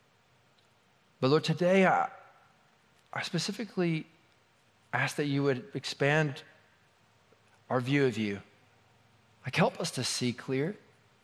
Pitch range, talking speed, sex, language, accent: 115-145 Hz, 110 wpm, male, English, American